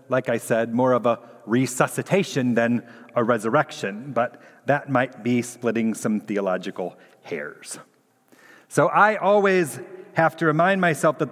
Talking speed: 140 wpm